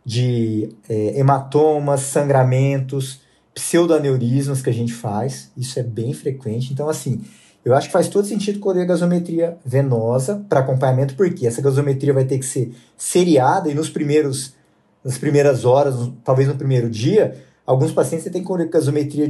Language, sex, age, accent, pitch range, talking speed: Portuguese, male, 20-39, Brazilian, 125-155 Hz, 160 wpm